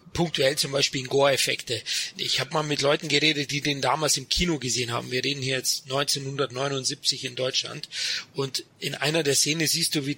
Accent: German